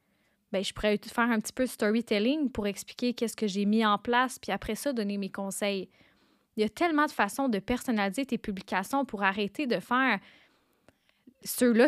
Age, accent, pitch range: 10-29, Canadian, 210-255 Hz